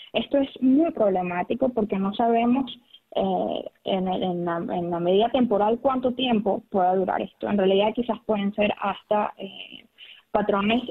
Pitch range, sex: 200-255 Hz, female